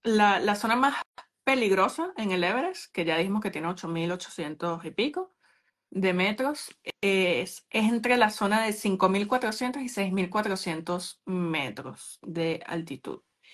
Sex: female